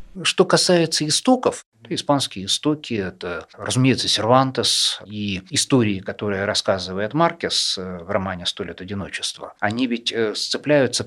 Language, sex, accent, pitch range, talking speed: Russian, male, native, 105-140 Hz, 120 wpm